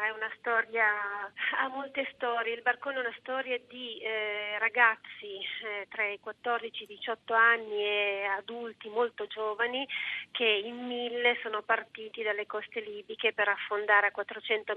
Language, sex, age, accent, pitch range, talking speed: Italian, female, 30-49, native, 205-235 Hz, 155 wpm